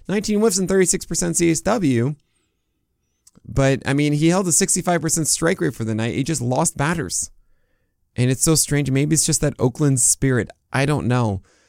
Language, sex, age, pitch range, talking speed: English, male, 20-39, 110-150 Hz, 175 wpm